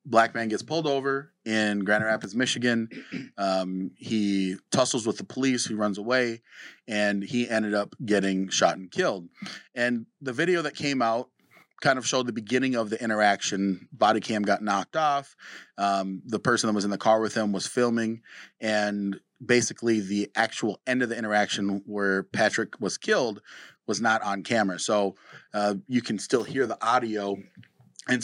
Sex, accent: male, American